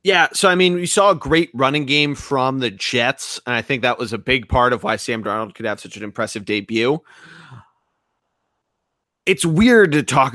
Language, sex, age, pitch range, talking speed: English, male, 30-49, 125-165 Hz, 205 wpm